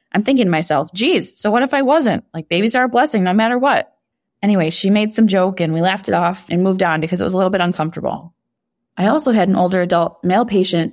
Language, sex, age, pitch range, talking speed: English, female, 20-39, 170-215 Hz, 255 wpm